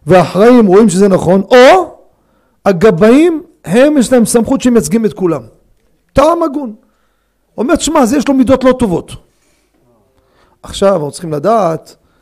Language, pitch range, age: Hebrew, 175-235 Hz, 40-59